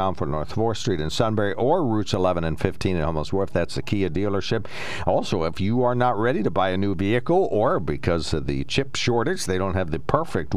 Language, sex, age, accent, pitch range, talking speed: English, male, 60-79, American, 80-110 Hz, 225 wpm